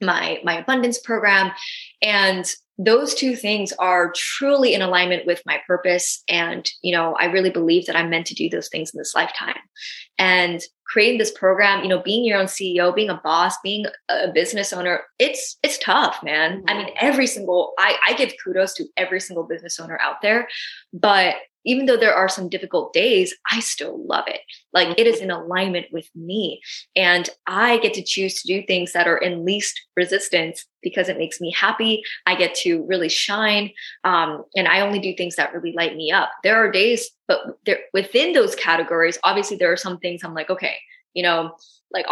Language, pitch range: English, 175-235 Hz